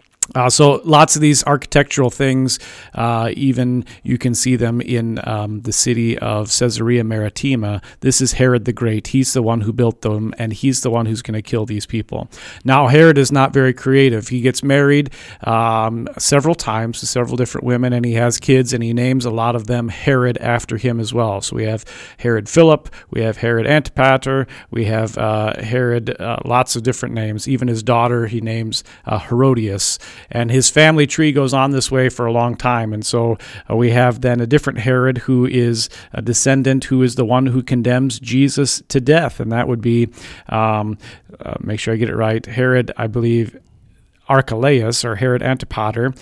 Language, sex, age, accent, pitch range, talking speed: English, male, 40-59, American, 115-130 Hz, 195 wpm